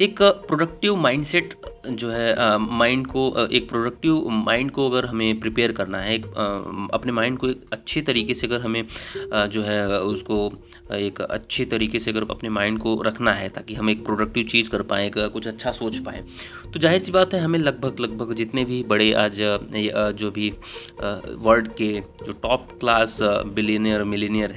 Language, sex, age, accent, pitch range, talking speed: Hindi, male, 30-49, native, 110-155 Hz, 175 wpm